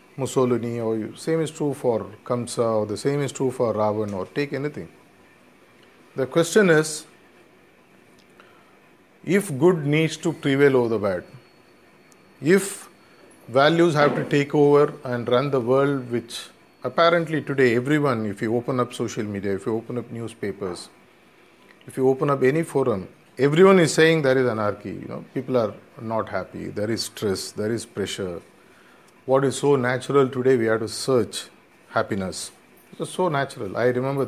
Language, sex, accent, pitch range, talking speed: English, male, Indian, 120-155 Hz, 165 wpm